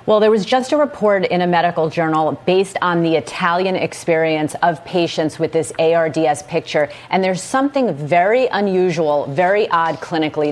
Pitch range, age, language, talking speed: 155-190 Hz, 30-49, English, 165 wpm